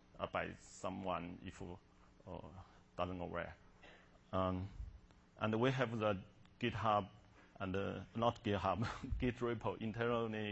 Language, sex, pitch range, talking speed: English, male, 90-105 Hz, 120 wpm